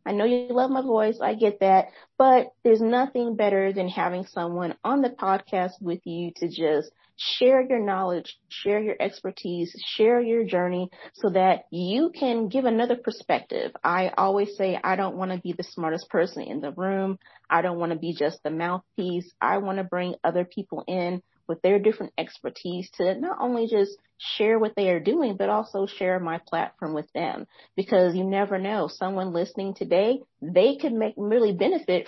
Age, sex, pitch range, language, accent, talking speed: 30-49, female, 180-225 Hz, English, American, 185 wpm